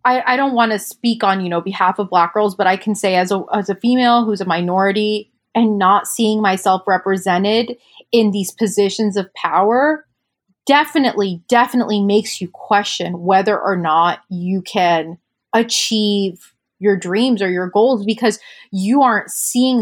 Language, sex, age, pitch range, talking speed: English, female, 20-39, 190-225 Hz, 165 wpm